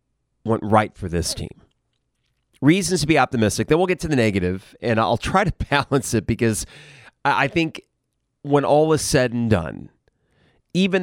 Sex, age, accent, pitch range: male, 30-49, American, 105-140 Hz